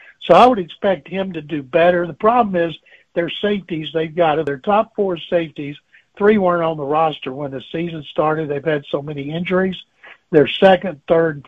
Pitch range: 155-180 Hz